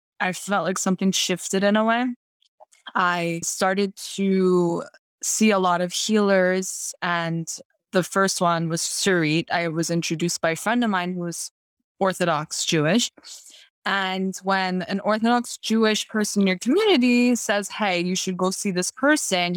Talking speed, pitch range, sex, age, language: 155 wpm, 170-205 Hz, female, 20-39, English